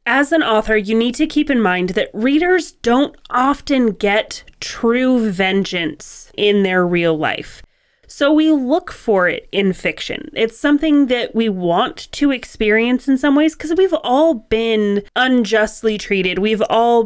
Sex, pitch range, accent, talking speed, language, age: female, 195-255 Hz, American, 160 wpm, English, 30-49